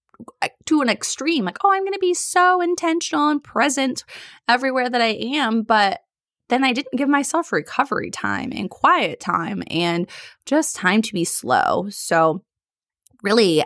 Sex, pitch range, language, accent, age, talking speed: female, 185-275 Hz, English, American, 20-39, 160 wpm